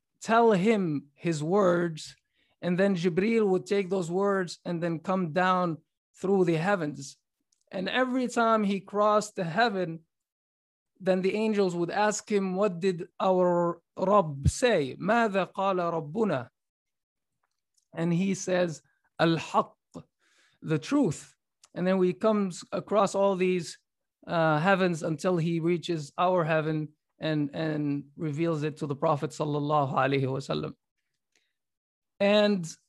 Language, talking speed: English, 120 wpm